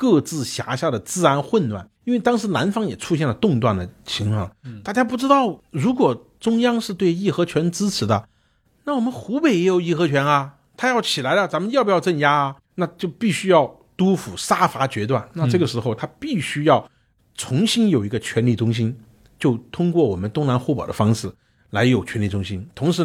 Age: 50-69